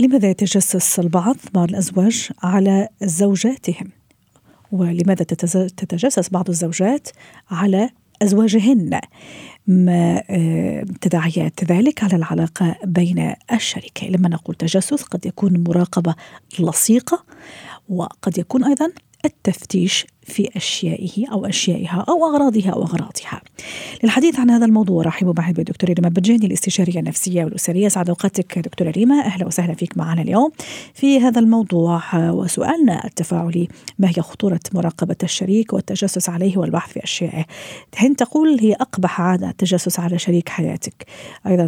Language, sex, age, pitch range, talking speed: Arabic, female, 40-59, 175-215 Hz, 120 wpm